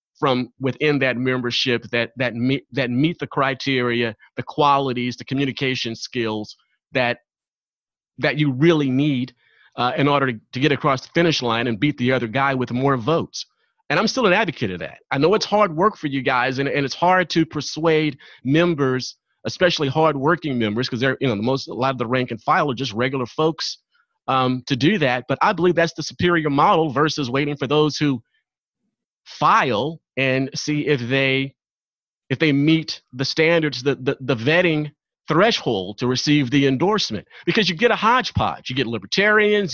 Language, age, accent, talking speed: English, 30-49, American, 185 wpm